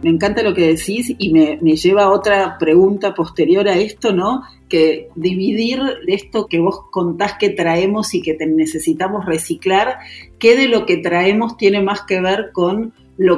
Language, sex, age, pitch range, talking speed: Spanish, female, 40-59, 180-245 Hz, 180 wpm